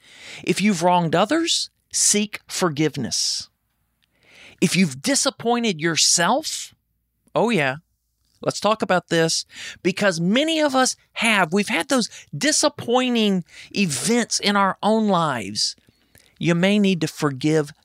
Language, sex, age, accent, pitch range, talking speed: English, male, 40-59, American, 170-240 Hz, 120 wpm